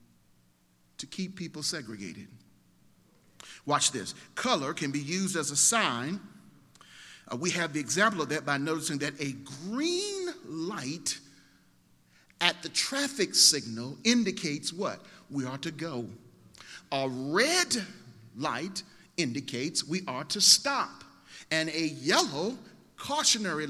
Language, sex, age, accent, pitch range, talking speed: English, male, 50-69, American, 135-200 Hz, 120 wpm